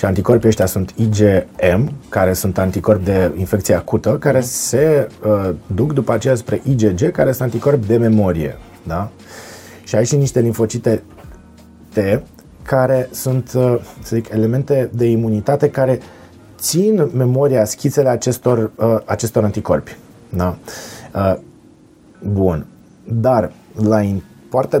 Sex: male